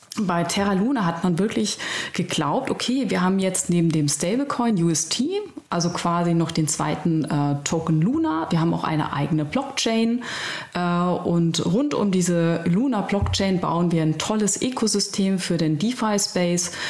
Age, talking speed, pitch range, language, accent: 30-49, 160 wpm, 160-200 Hz, German, German